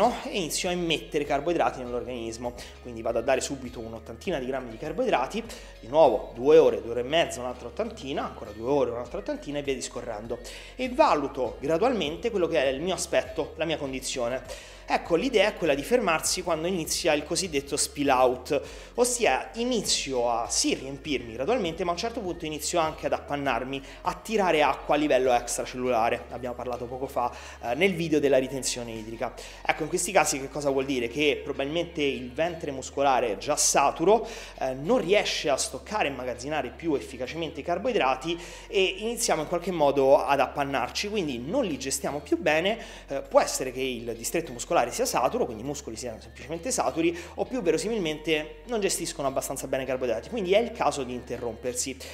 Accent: native